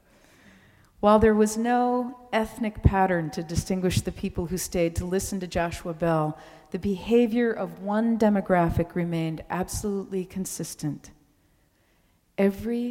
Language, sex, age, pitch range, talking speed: English, female, 50-69, 145-195 Hz, 120 wpm